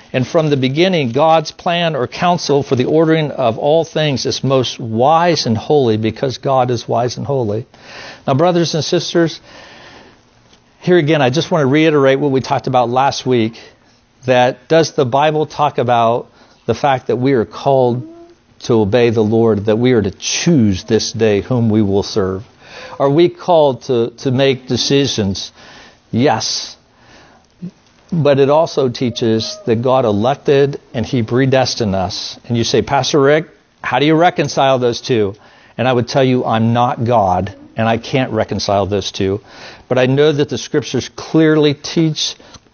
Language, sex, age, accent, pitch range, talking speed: English, male, 50-69, American, 115-155 Hz, 170 wpm